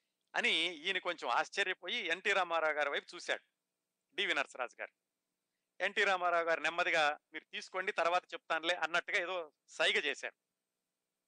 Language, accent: Telugu, native